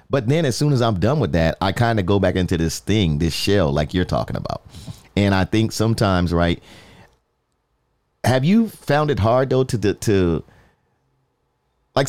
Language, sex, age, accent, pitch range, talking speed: English, male, 30-49, American, 85-115 Hz, 185 wpm